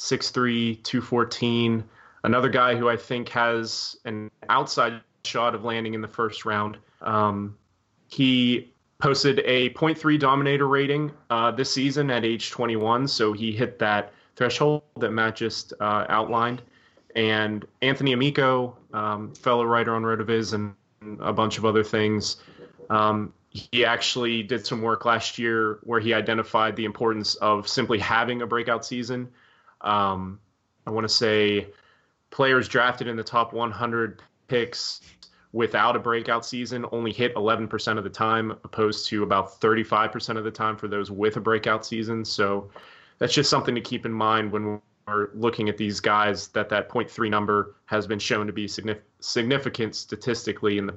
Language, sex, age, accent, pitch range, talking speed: English, male, 20-39, American, 105-125 Hz, 160 wpm